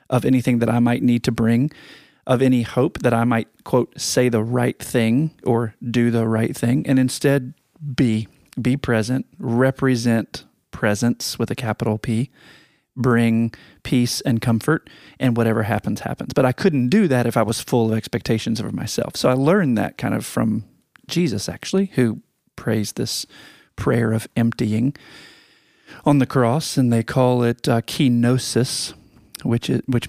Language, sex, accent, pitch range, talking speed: English, male, American, 115-130 Hz, 165 wpm